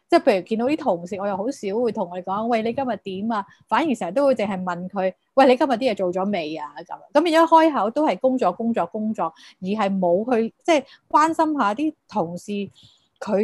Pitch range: 195-275 Hz